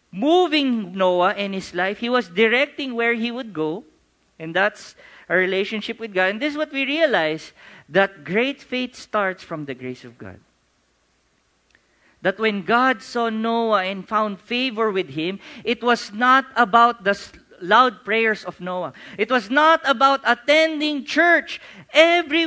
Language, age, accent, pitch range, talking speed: English, 40-59, Filipino, 180-260 Hz, 160 wpm